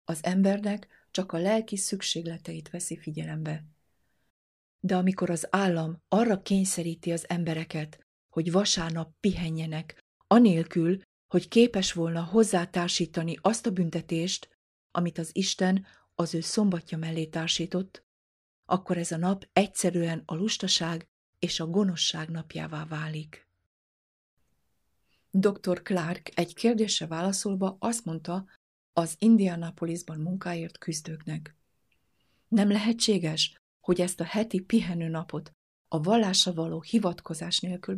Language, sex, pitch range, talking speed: Hungarian, female, 165-195 Hz, 110 wpm